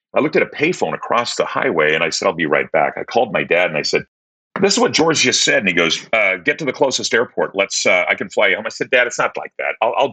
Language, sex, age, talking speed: English, male, 40-59, 315 wpm